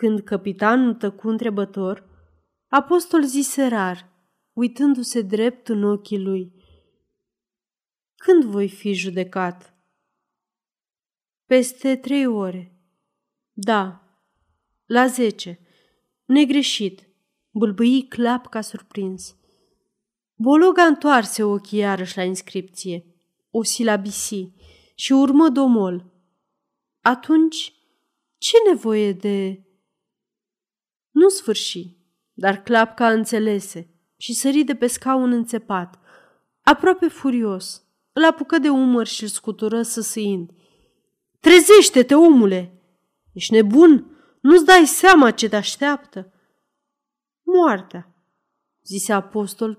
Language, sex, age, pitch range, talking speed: Romanian, female, 30-49, 195-280 Hz, 95 wpm